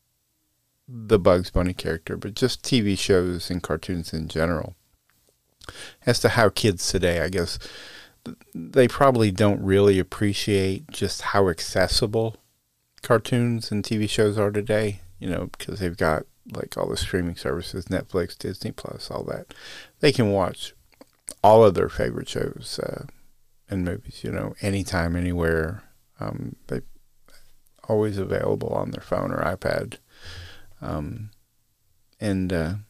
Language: English